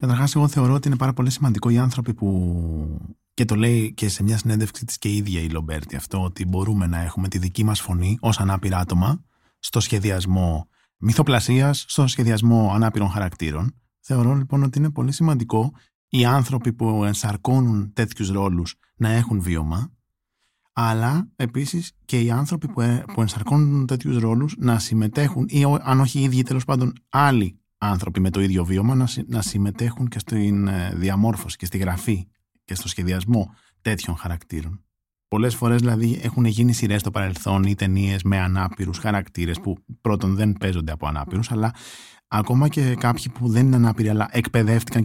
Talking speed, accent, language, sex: 165 wpm, native, Greek, male